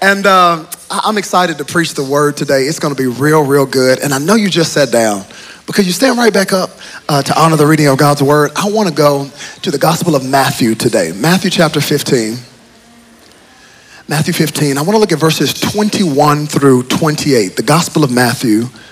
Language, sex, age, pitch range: English, male, 40-59, 130-180 Hz